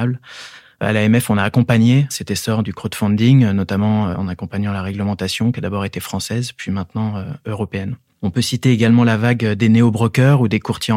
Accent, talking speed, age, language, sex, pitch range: French, 180 wpm, 20-39, French, male, 105-120 Hz